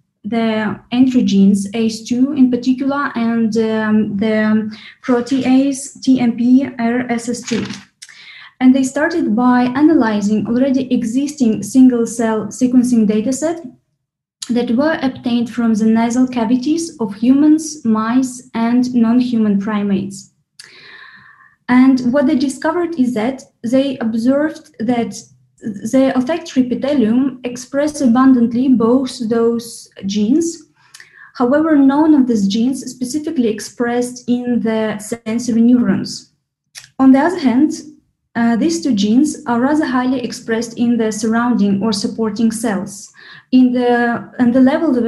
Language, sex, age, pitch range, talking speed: English, female, 20-39, 225-265 Hz, 115 wpm